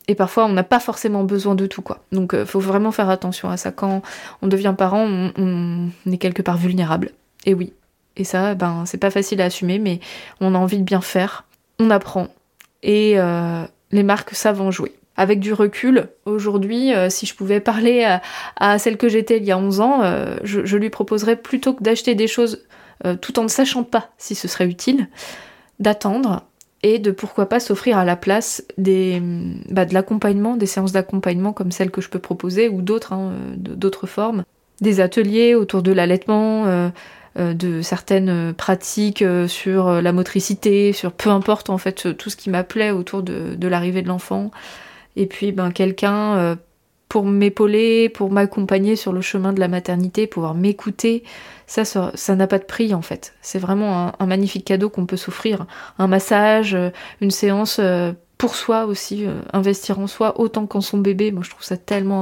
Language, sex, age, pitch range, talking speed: French, female, 20-39, 185-210 Hz, 195 wpm